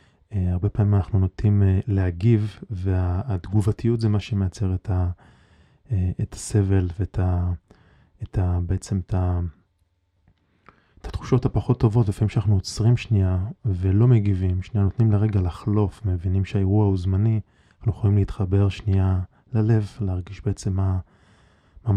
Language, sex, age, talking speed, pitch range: Hebrew, male, 20-39, 125 wpm, 95-105 Hz